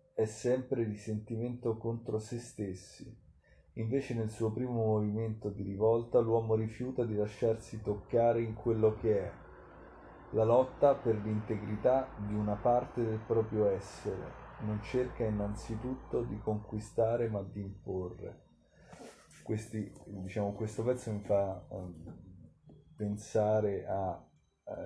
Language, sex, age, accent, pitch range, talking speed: Italian, male, 30-49, native, 95-115 Hz, 125 wpm